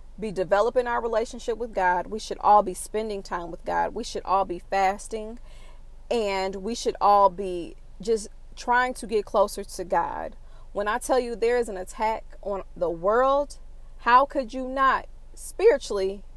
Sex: female